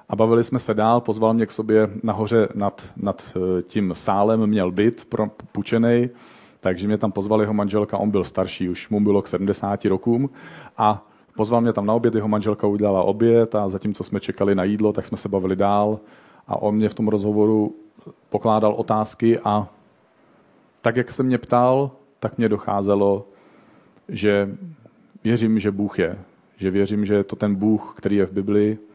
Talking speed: 180 wpm